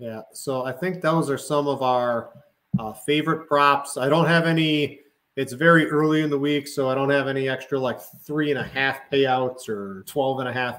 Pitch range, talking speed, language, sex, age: 135-160 Hz, 190 wpm, English, male, 30-49